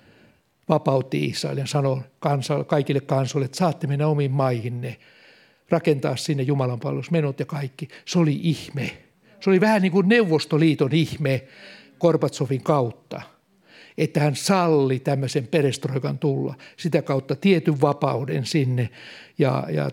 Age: 60-79